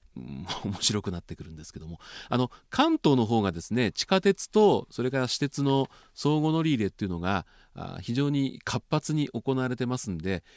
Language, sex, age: Japanese, male, 40-59